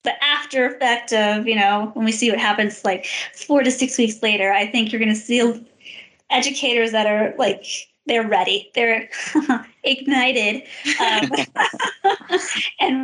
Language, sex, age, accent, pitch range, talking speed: English, female, 20-39, American, 215-265 Hz, 150 wpm